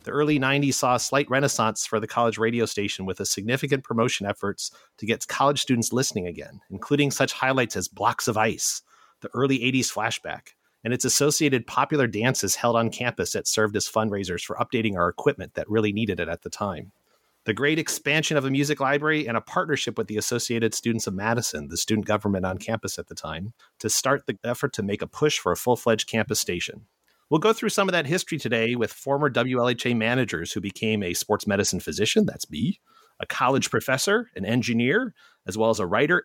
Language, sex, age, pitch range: English, male, 30-49, 105-140 Hz